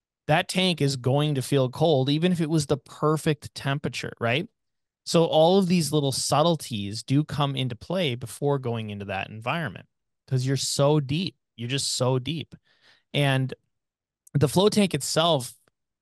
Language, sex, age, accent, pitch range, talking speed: English, male, 20-39, American, 115-150 Hz, 160 wpm